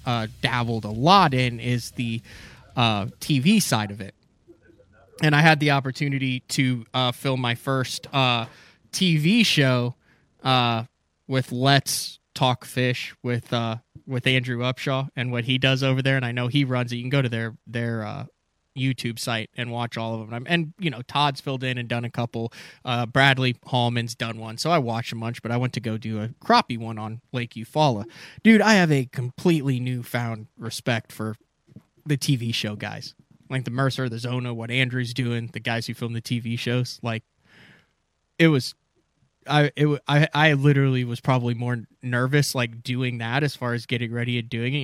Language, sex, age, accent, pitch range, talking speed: English, male, 20-39, American, 115-135 Hz, 190 wpm